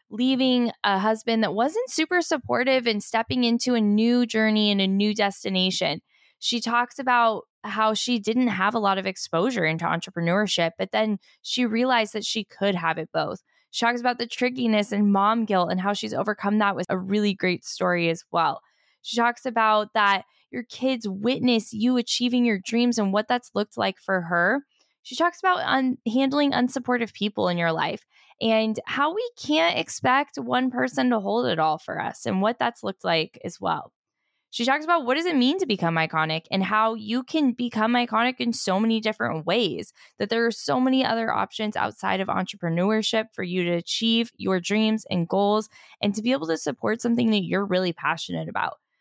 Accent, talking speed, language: American, 195 wpm, English